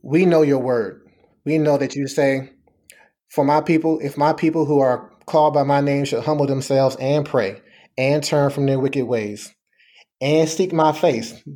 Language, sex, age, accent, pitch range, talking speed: English, male, 30-49, American, 145-170 Hz, 185 wpm